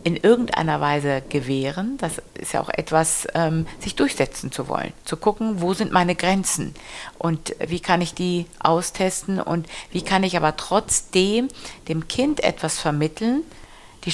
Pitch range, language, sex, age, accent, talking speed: 155-205 Hz, German, female, 50-69, German, 155 wpm